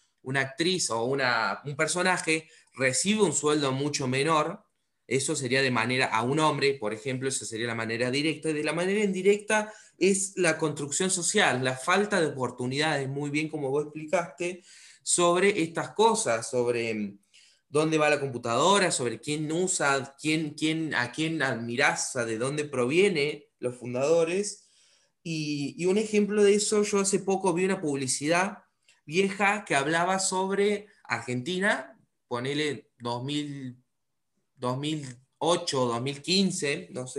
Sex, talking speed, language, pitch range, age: male, 140 wpm, Spanish, 135-190 Hz, 20-39